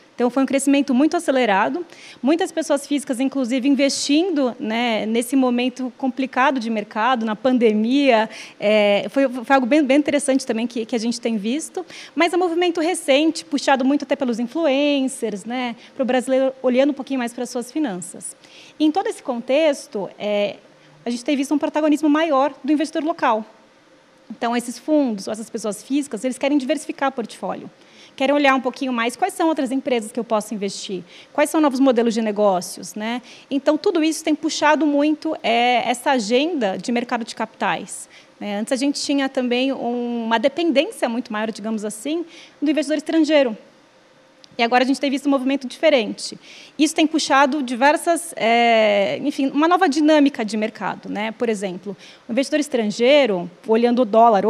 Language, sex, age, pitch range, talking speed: Portuguese, female, 20-39, 235-295 Hz, 175 wpm